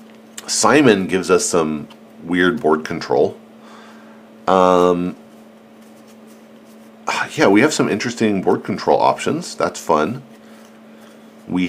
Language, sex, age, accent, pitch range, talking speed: English, male, 40-59, American, 80-110 Hz, 100 wpm